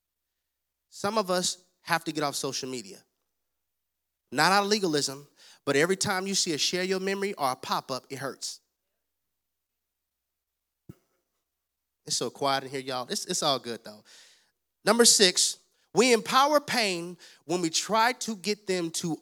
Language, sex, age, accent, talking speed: English, male, 30-49, American, 155 wpm